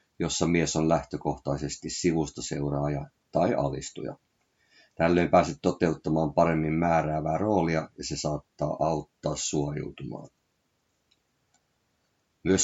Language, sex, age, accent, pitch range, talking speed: Finnish, male, 50-69, native, 75-85 Hz, 90 wpm